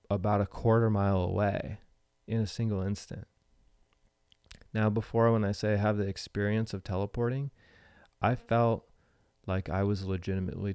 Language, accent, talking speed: English, American, 145 wpm